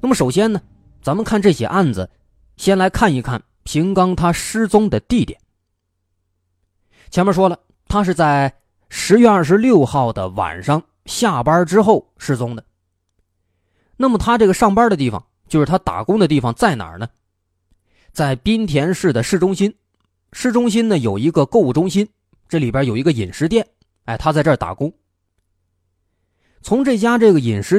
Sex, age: male, 20-39